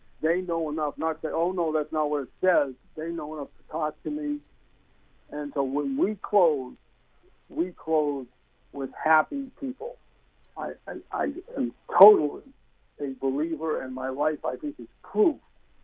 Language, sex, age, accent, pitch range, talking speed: English, male, 60-79, American, 135-160 Hz, 165 wpm